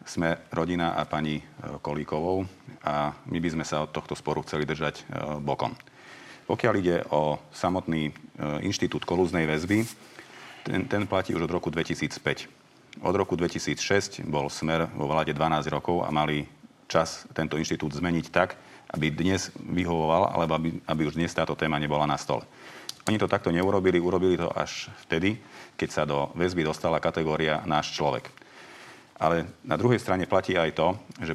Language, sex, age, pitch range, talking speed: Slovak, male, 40-59, 75-90 Hz, 160 wpm